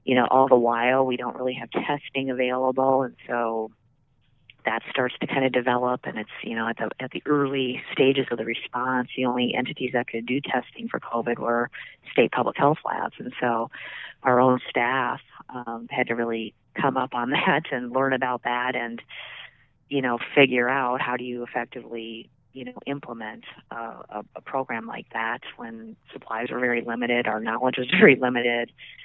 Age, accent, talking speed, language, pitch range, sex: 40-59, American, 190 wpm, English, 120-135 Hz, female